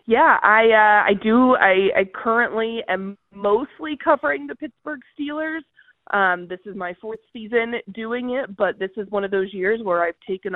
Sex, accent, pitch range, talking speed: female, American, 180-225 Hz, 180 wpm